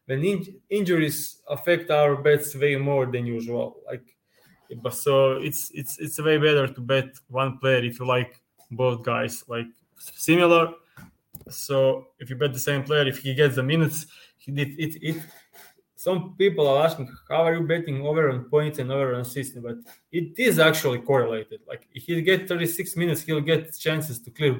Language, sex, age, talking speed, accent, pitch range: English, male, 20-39, 185 wpm, Serbian, 130-160 Hz